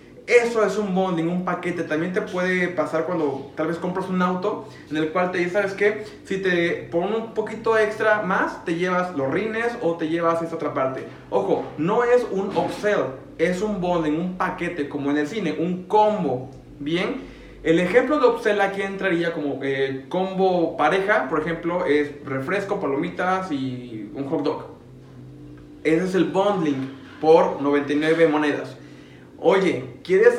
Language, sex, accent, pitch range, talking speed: Spanish, male, Mexican, 155-210 Hz, 165 wpm